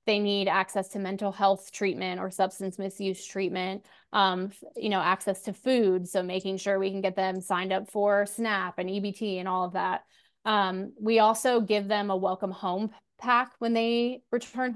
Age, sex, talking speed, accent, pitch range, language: 20-39, female, 185 wpm, American, 190-210 Hz, English